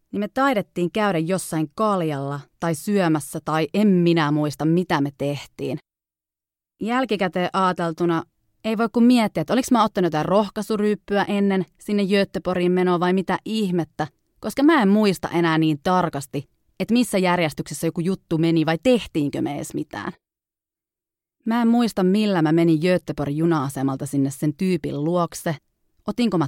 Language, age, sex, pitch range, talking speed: Finnish, 30-49, female, 160-205 Hz, 145 wpm